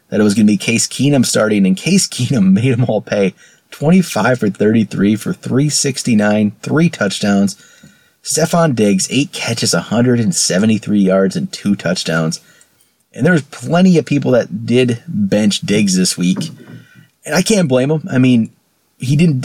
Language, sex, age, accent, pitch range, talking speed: English, male, 30-49, American, 115-185 Hz, 160 wpm